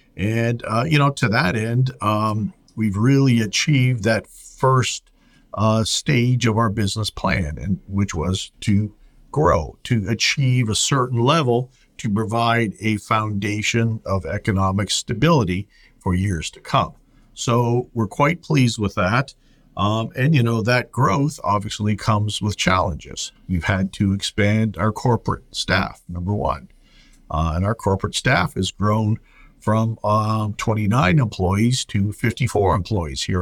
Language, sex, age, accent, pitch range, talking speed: English, male, 50-69, American, 105-125 Hz, 145 wpm